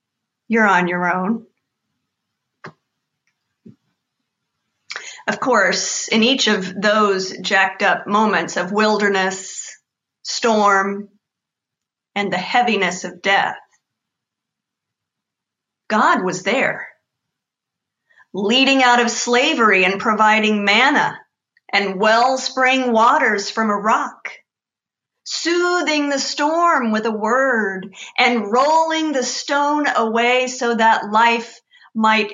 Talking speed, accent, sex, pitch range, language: 95 wpm, American, female, 205-250 Hz, English